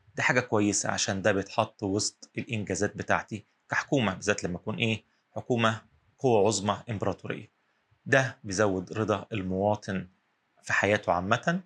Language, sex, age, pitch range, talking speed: Arabic, male, 30-49, 100-120 Hz, 130 wpm